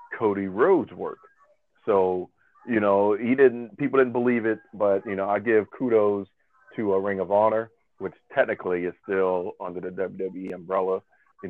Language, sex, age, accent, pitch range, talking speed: English, male, 40-59, American, 95-105 Hz, 165 wpm